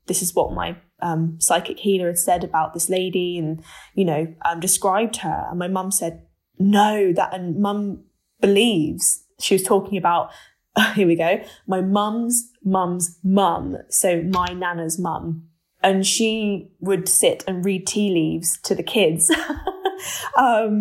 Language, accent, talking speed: English, British, 160 wpm